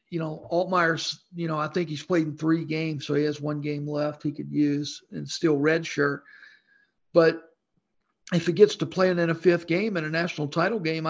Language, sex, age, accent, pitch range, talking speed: English, male, 50-69, American, 155-185 Hz, 215 wpm